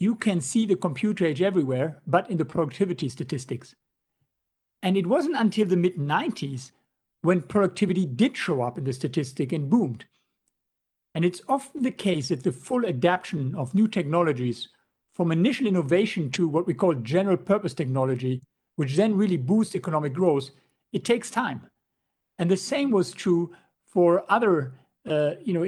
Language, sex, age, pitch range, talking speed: English, male, 60-79, 150-195 Hz, 160 wpm